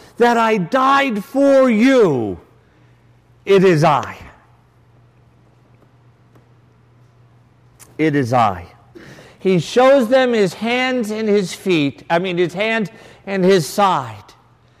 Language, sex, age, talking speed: English, male, 50-69, 105 wpm